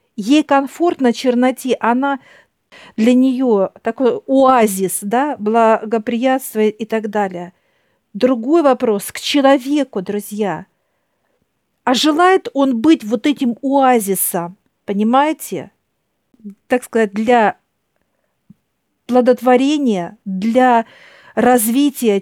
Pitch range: 225-275 Hz